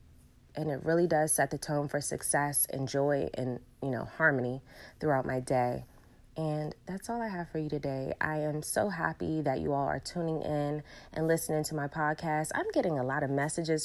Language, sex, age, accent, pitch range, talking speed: English, female, 20-39, American, 140-160 Hz, 205 wpm